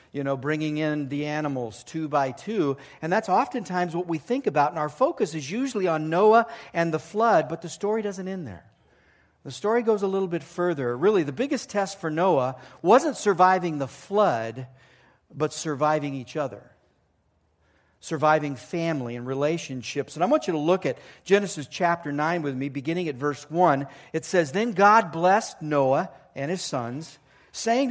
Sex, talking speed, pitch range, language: male, 180 wpm, 150-200 Hz, English